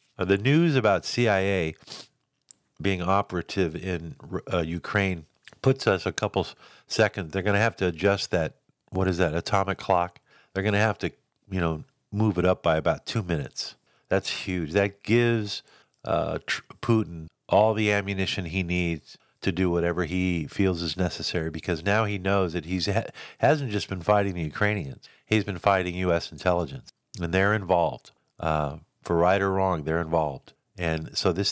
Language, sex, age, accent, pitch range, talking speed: English, male, 50-69, American, 85-105 Hz, 170 wpm